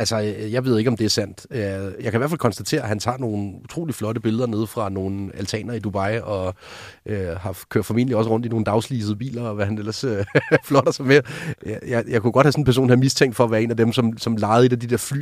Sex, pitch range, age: male, 105-130 Hz, 30-49